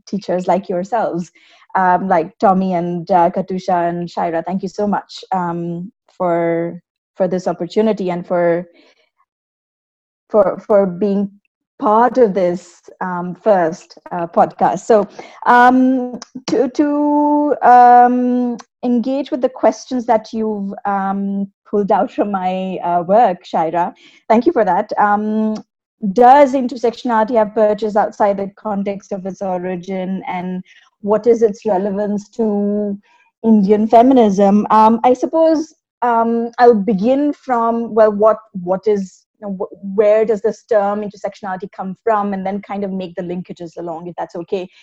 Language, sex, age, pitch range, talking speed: English, female, 20-39, 180-225 Hz, 140 wpm